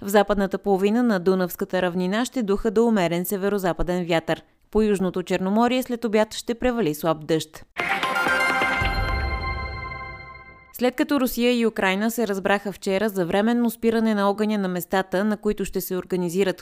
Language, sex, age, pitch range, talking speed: Bulgarian, female, 20-39, 180-220 Hz, 150 wpm